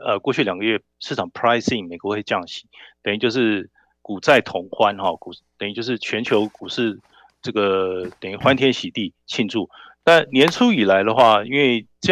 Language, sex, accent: Chinese, male, native